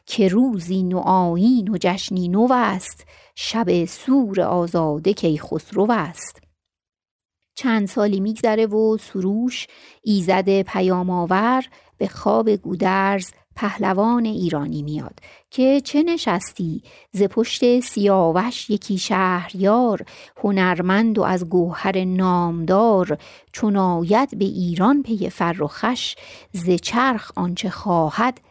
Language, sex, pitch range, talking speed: Persian, female, 180-235 Hz, 105 wpm